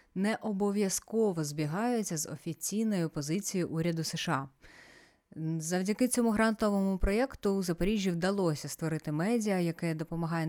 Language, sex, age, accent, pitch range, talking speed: Ukrainian, female, 30-49, native, 155-195 Hz, 110 wpm